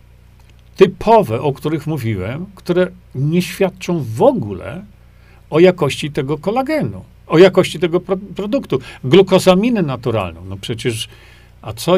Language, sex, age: Polish, male, 50-69